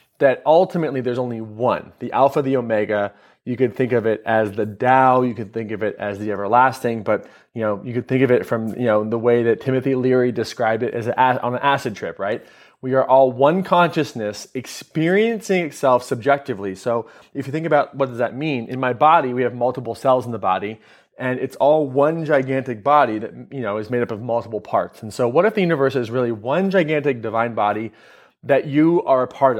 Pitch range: 115-140 Hz